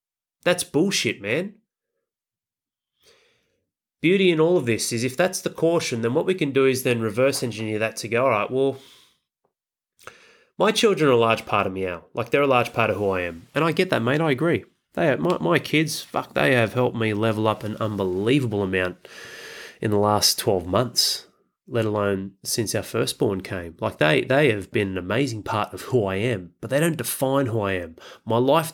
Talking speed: 210 wpm